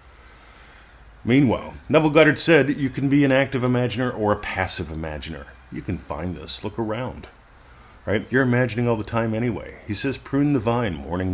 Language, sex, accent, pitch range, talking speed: English, male, American, 85-115 Hz, 175 wpm